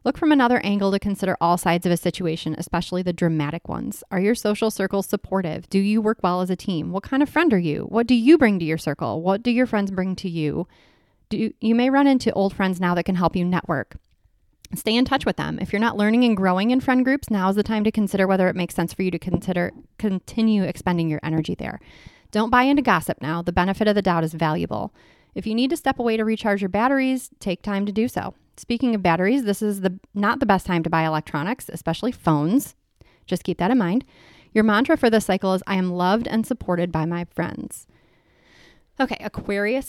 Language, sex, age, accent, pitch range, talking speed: English, female, 30-49, American, 175-230 Hz, 235 wpm